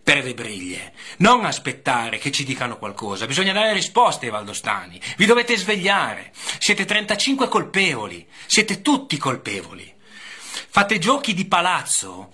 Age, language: 30-49, Italian